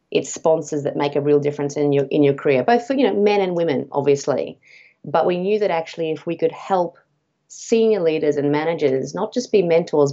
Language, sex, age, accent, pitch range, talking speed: English, female, 30-49, Australian, 140-165 Hz, 220 wpm